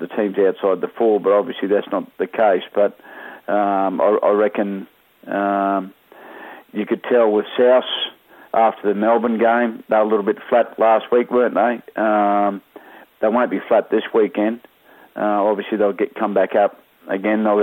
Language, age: English, 40-59